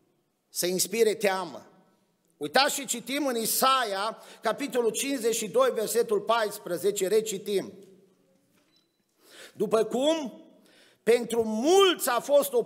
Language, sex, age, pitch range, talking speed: Romanian, male, 50-69, 200-275 Hz, 95 wpm